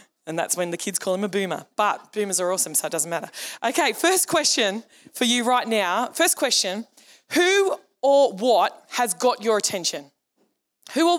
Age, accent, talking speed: 20-39, Australian, 190 wpm